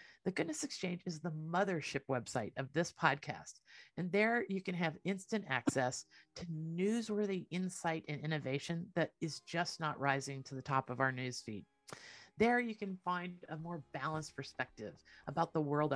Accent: American